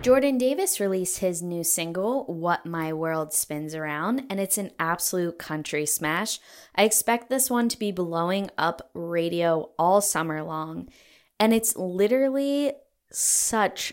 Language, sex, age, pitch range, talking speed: English, female, 10-29, 160-220 Hz, 140 wpm